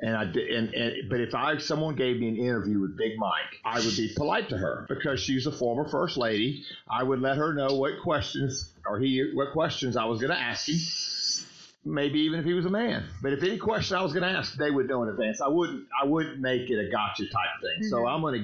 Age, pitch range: 50-69, 110-150 Hz